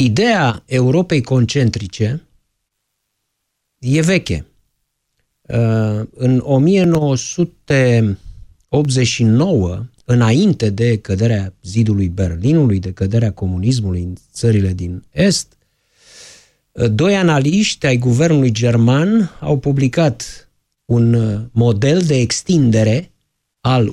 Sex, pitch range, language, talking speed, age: male, 115-165 Hz, Romanian, 80 wpm, 50-69